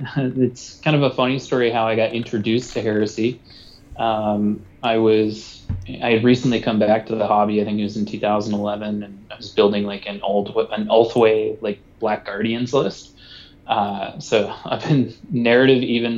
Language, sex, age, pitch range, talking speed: English, male, 20-39, 105-120 Hz, 180 wpm